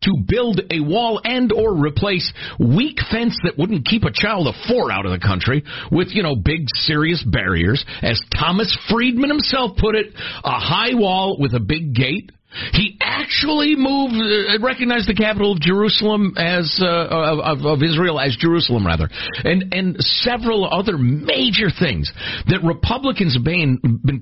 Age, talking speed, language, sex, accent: 50-69, 165 wpm, English, male, American